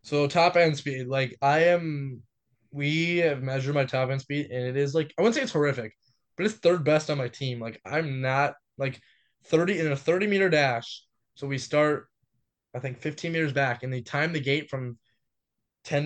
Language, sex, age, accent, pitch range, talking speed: English, male, 10-29, American, 125-150 Hz, 205 wpm